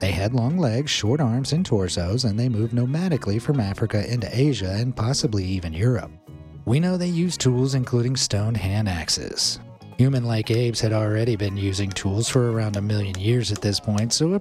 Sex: male